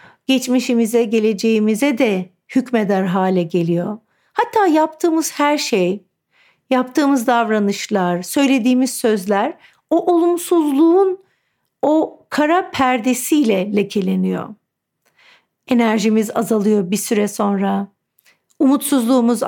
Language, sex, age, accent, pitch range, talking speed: Turkish, female, 50-69, native, 200-265 Hz, 80 wpm